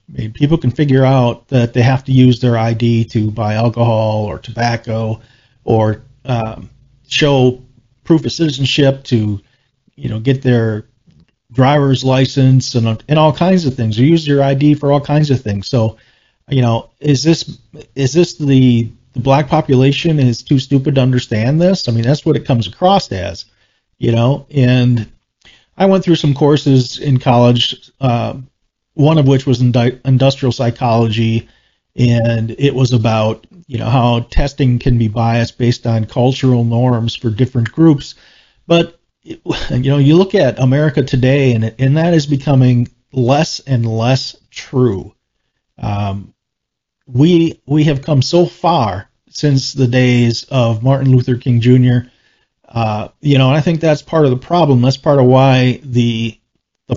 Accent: American